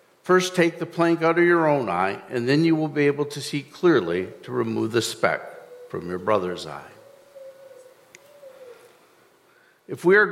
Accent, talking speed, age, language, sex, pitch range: American, 170 wpm, 50-69, English, male, 145-200 Hz